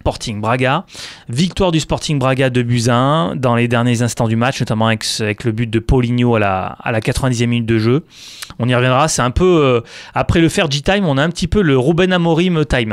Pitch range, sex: 120-155 Hz, male